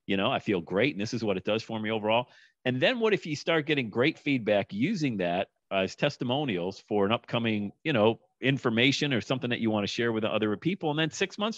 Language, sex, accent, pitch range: English, male, American, 105-145 Hz